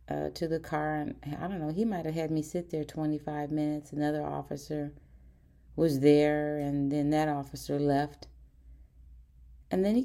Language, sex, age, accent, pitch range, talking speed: English, female, 40-59, American, 140-170 Hz, 175 wpm